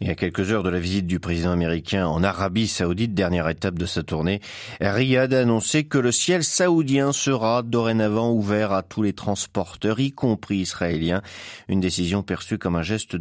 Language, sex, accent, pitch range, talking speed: French, male, French, 90-135 Hz, 190 wpm